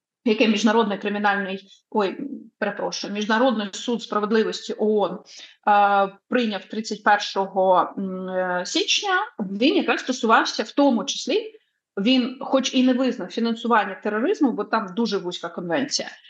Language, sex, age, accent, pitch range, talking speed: Ukrainian, female, 30-49, native, 210-265 Hz, 105 wpm